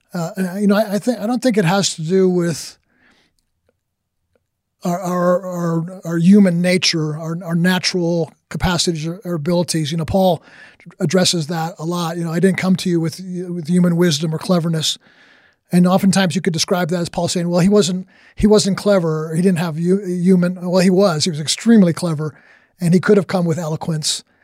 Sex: male